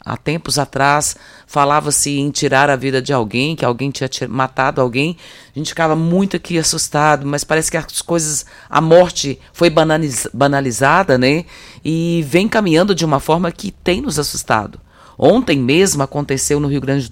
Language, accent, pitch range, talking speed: Portuguese, Brazilian, 130-165 Hz, 170 wpm